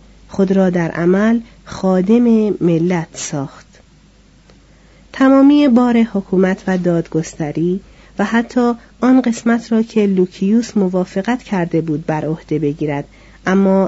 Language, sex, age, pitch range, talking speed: Persian, female, 40-59, 170-220 Hz, 110 wpm